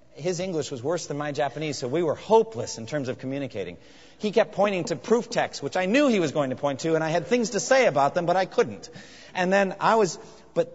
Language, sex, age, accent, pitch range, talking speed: English, male, 40-59, American, 115-160 Hz, 255 wpm